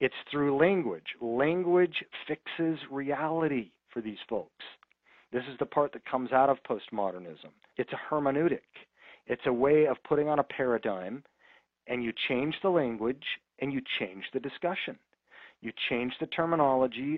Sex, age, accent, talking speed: male, 40-59, American, 150 wpm